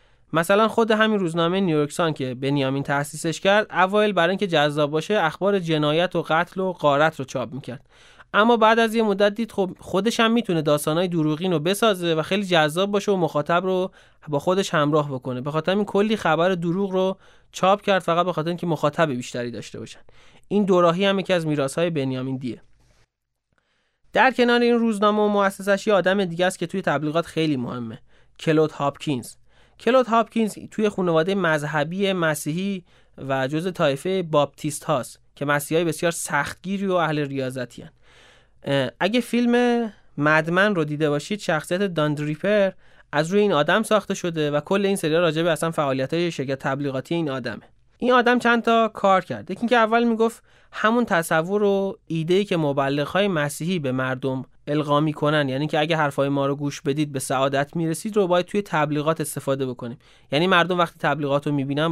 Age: 30-49